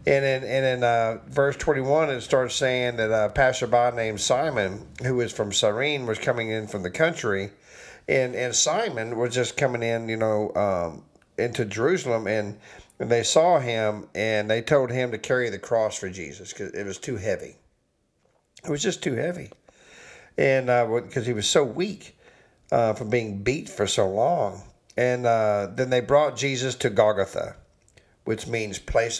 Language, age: English, 50-69